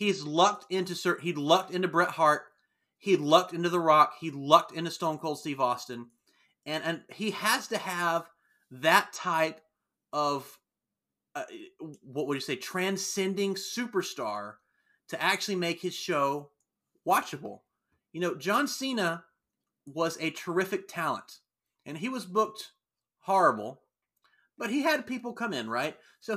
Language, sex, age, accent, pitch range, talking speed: English, male, 30-49, American, 150-205 Hz, 145 wpm